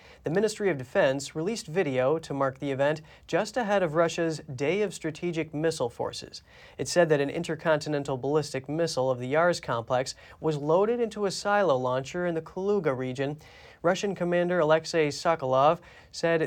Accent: American